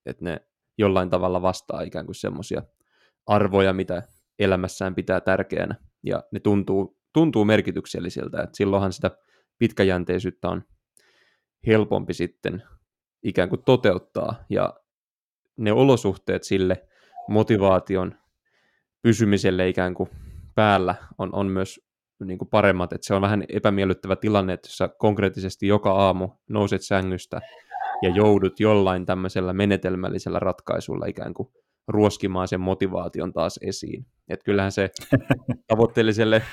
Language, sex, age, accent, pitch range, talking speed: Finnish, male, 20-39, native, 95-105 Hz, 120 wpm